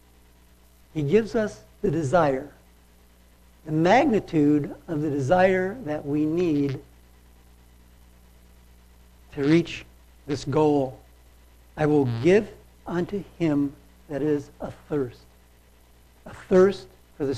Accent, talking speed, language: American, 105 wpm, English